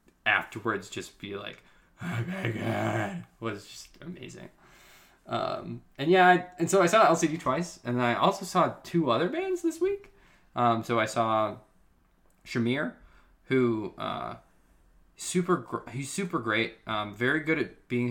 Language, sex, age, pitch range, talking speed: English, male, 20-39, 100-130 Hz, 150 wpm